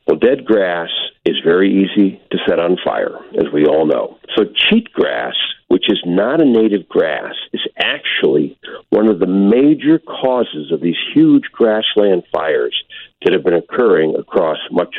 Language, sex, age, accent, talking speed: English, male, 60-79, American, 160 wpm